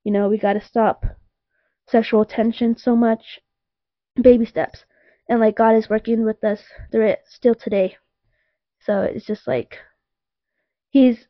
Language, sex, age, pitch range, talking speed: English, female, 20-39, 210-240 Hz, 150 wpm